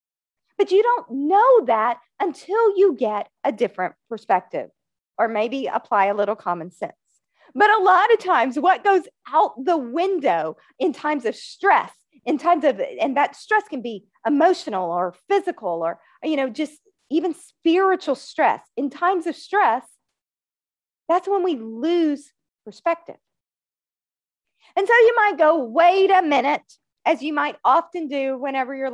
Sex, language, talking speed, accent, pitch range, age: female, English, 155 wpm, American, 245-360 Hz, 40-59